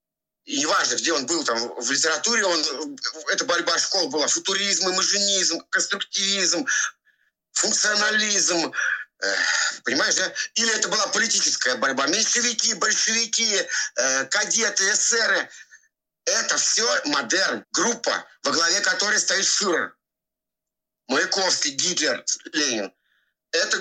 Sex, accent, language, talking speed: male, native, Russian, 110 wpm